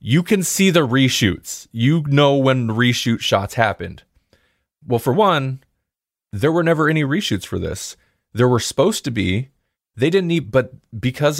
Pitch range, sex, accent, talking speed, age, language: 95-130 Hz, male, American, 165 wpm, 20-39, English